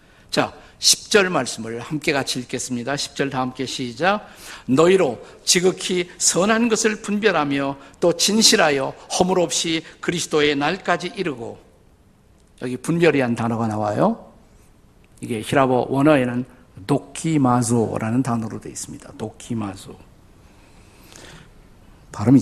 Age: 50-69